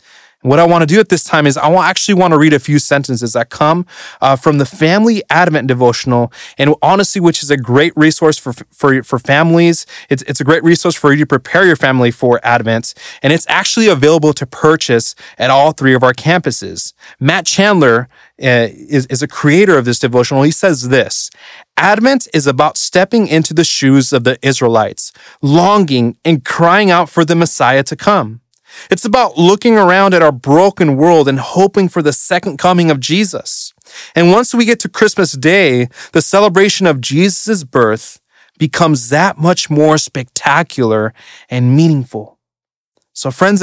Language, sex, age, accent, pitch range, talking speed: English, male, 30-49, American, 130-180 Hz, 180 wpm